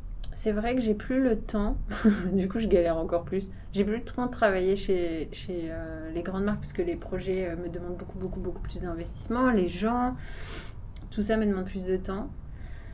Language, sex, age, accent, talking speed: French, female, 30-49, French, 215 wpm